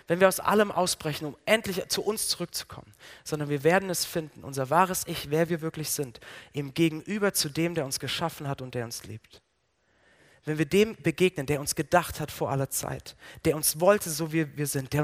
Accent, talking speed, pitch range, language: German, 210 wpm, 140-190 Hz, German